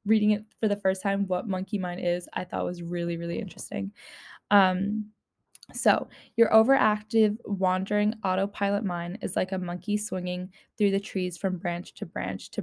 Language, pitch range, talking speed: English, 185-210 Hz, 170 wpm